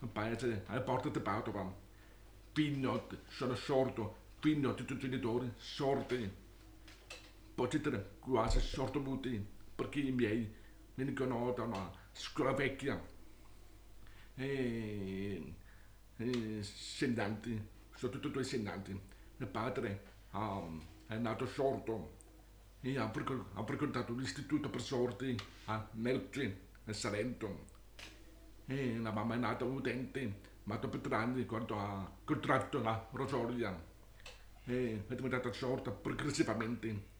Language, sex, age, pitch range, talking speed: Italian, male, 60-79, 105-130 Hz, 115 wpm